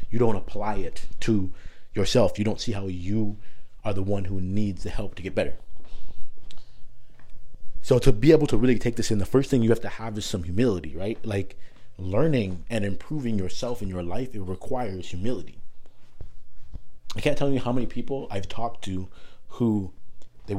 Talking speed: 185 wpm